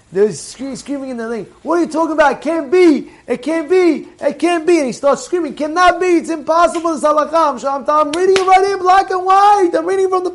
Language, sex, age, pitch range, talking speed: English, male, 20-39, 215-335 Hz, 240 wpm